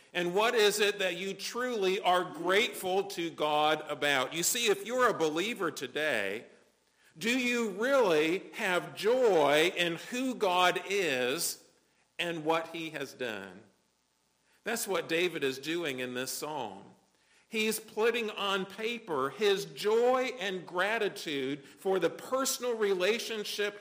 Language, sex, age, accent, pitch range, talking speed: English, male, 50-69, American, 165-230 Hz, 135 wpm